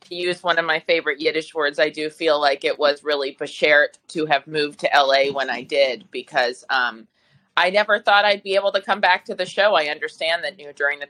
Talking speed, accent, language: 245 wpm, American, English